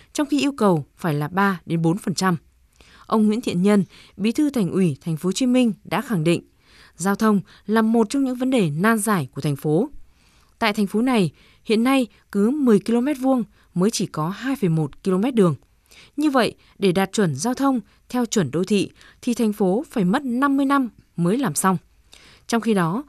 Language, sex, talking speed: Vietnamese, female, 205 wpm